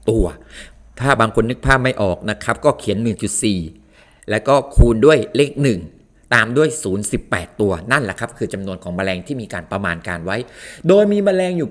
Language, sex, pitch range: Thai, male, 105-145 Hz